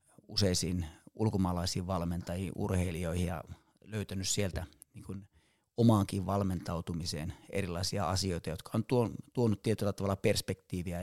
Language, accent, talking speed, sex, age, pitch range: Finnish, native, 100 wpm, male, 30-49, 90-105 Hz